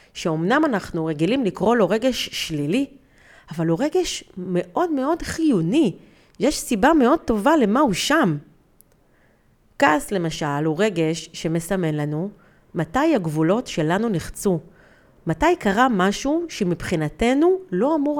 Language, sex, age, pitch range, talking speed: Hebrew, female, 40-59, 170-275 Hz, 120 wpm